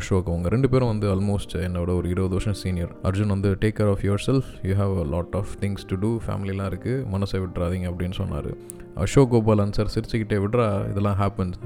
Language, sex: Tamil, male